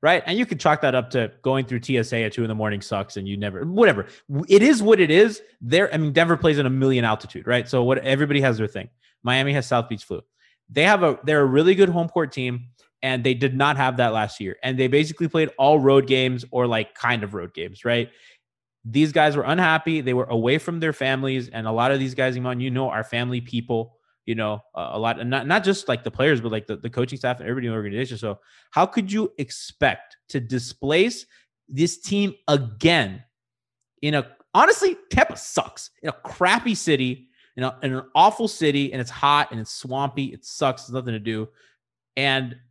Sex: male